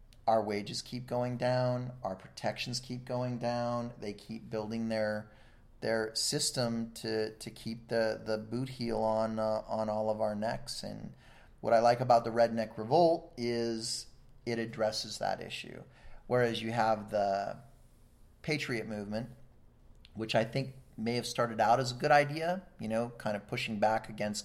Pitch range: 110-120 Hz